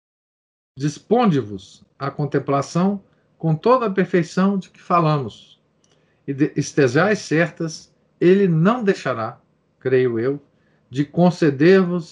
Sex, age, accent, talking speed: male, 50-69, Brazilian, 105 wpm